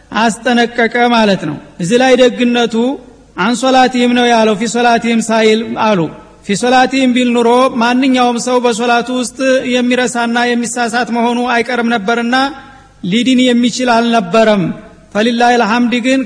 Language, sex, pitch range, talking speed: Amharic, male, 235-255 Hz, 105 wpm